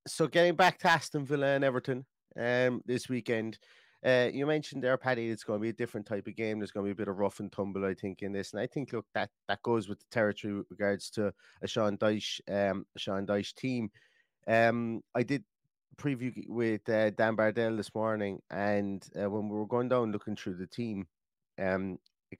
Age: 30-49